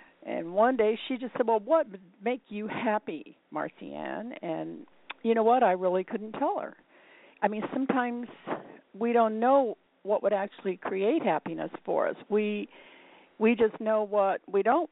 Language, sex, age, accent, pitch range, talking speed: English, female, 50-69, American, 175-245 Hz, 170 wpm